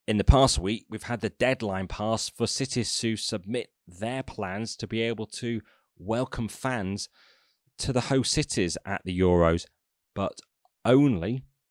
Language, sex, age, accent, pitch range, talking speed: English, male, 30-49, British, 95-115 Hz, 155 wpm